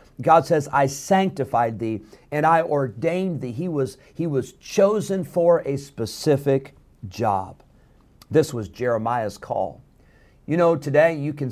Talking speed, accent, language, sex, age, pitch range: 135 wpm, American, English, male, 50-69, 125-165 Hz